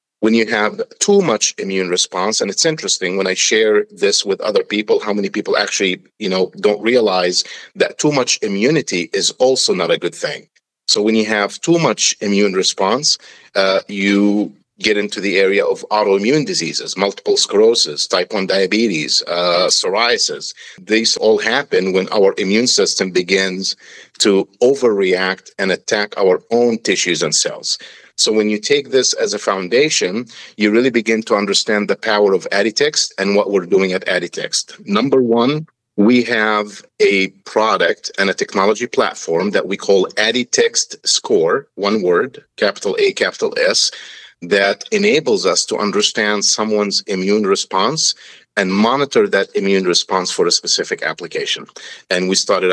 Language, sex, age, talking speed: English, male, 50-69, 160 wpm